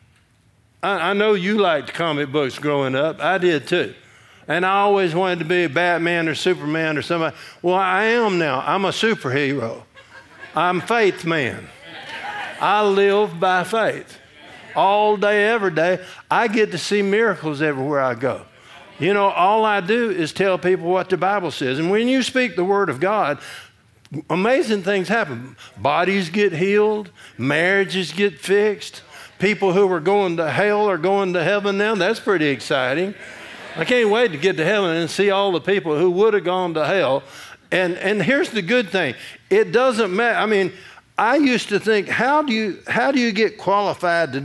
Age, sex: 50-69, male